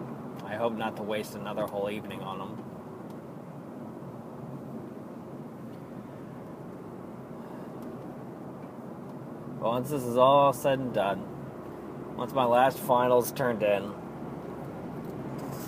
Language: English